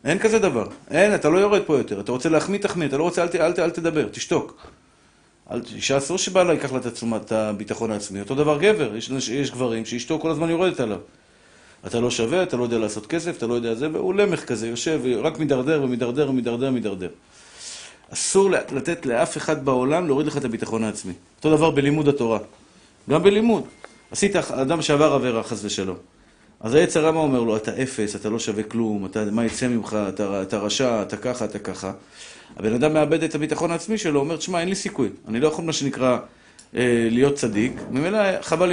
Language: Hebrew